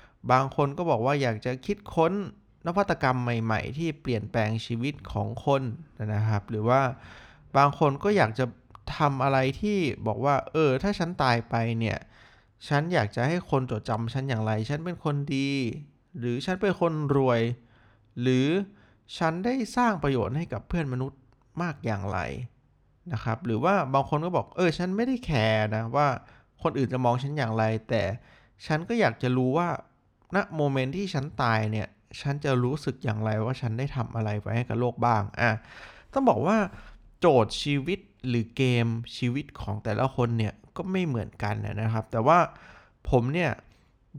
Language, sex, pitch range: Thai, male, 115-150 Hz